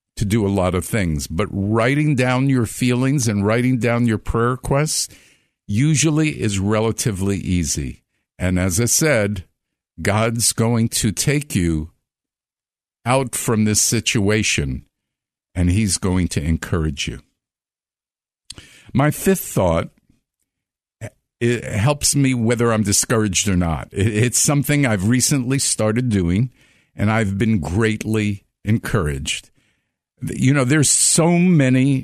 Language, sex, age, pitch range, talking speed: English, male, 50-69, 100-130 Hz, 125 wpm